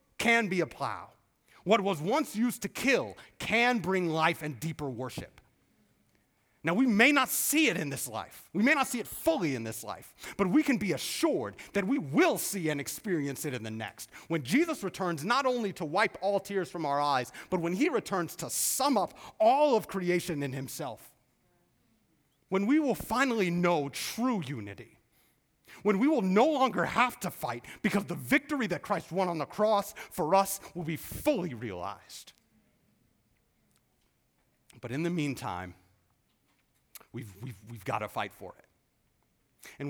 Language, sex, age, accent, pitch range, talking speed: English, male, 30-49, American, 140-225 Hz, 175 wpm